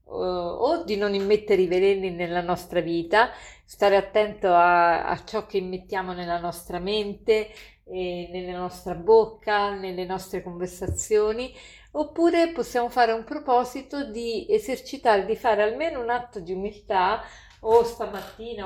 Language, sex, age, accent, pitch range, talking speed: Italian, female, 50-69, native, 185-225 Hz, 130 wpm